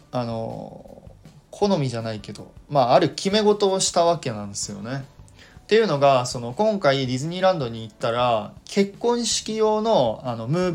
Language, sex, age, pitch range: Japanese, male, 20-39, 115-175 Hz